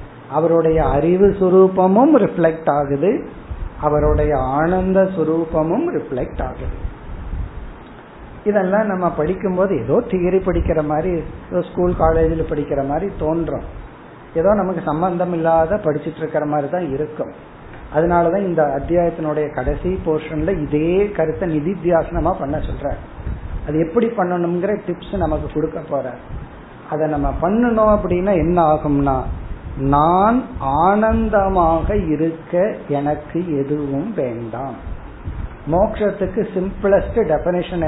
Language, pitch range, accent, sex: Tamil, 150-185 Hz, native, male